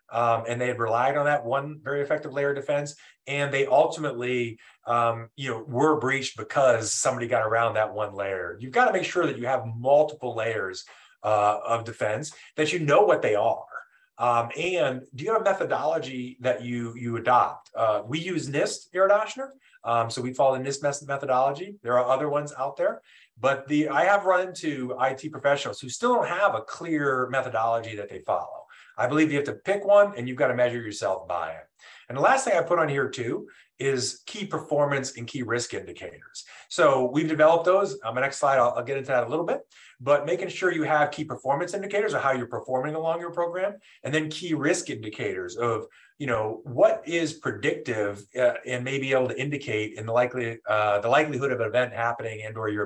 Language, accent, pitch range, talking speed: English, American, 120-170 Hz, 215 wpm